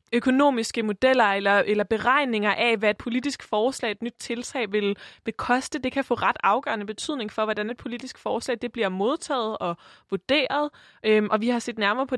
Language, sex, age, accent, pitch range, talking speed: Danish, female, 20-39, native, 200-250 Hz, 190 wpm